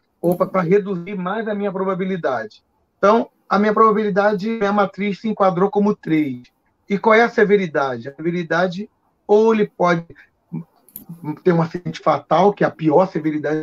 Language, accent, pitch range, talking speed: Portuguese, Brazilian, 170-215 Hz, 165 wpm